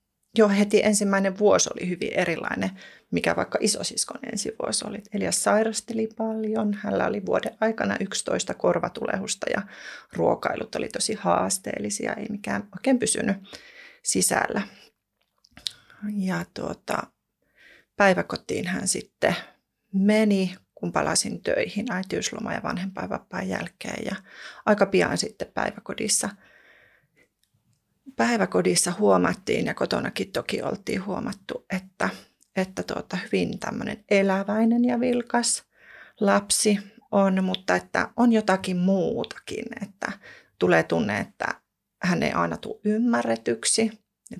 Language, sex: Finnish, female